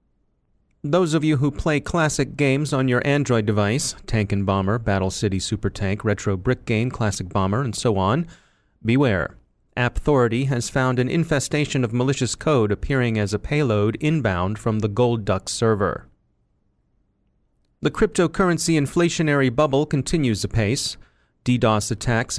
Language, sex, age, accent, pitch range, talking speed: English, male, 30-49, American, 115-145 Hz, 145 wpm